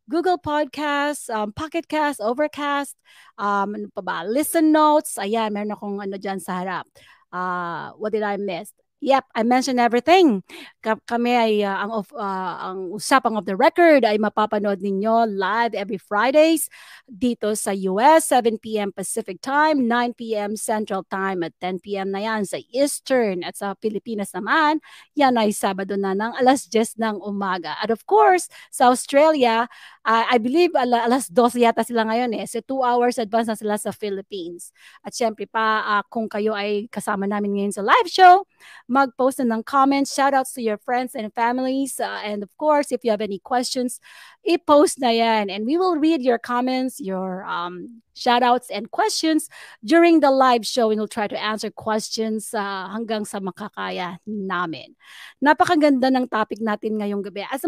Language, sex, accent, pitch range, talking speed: English, female, Filipino, 205-280 Hz, 170 wpm